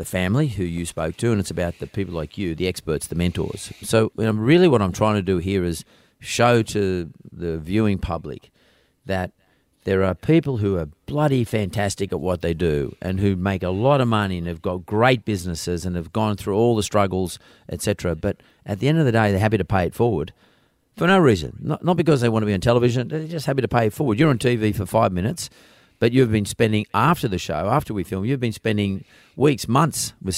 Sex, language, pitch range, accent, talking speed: male, English, 95-120 Hz, Australian, 235 wpm